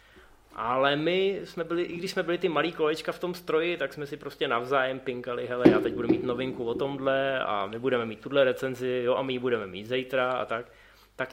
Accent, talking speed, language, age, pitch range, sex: native, 235 wpm, Czech, 20-39, 125-150 Hz, male